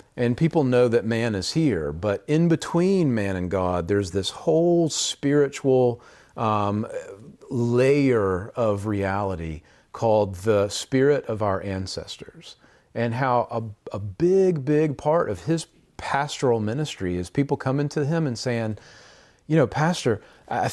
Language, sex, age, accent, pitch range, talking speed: English, male, 40-59, American, 105-140 Hz, 140 wpm